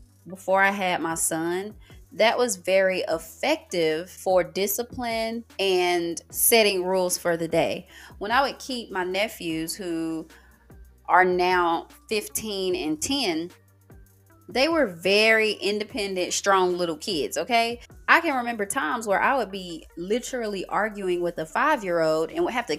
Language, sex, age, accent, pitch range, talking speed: English, female, 20-39, American, 170-225 Hz, 140 wpm